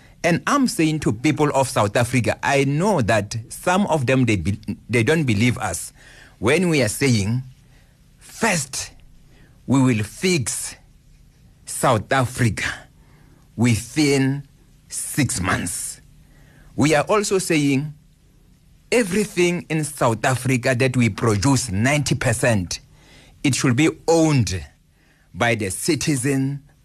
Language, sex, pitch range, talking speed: English, male, 120-155 Hz, 115 wpm